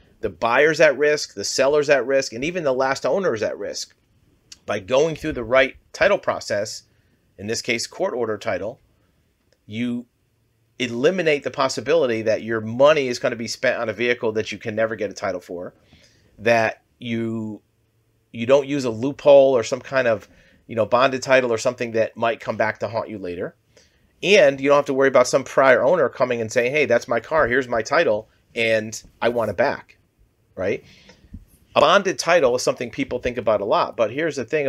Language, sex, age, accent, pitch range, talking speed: English, male, 40-59, American, 110-135 Hz, 200 wpm